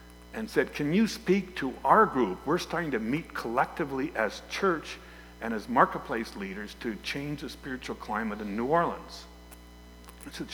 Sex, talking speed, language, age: male, 165 wpm, English, 60-79